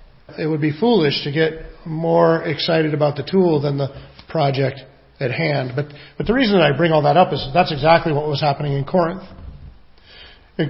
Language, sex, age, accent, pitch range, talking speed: English, male, 40-59, American, 160-195 Hz, 195 wpm